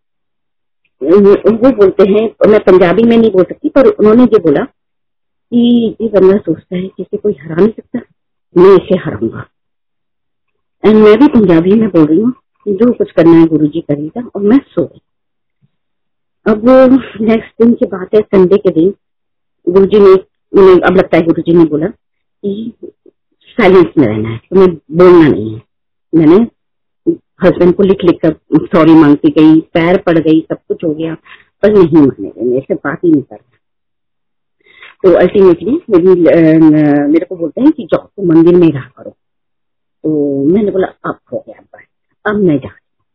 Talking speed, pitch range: 145 wpm, 165-220 Hz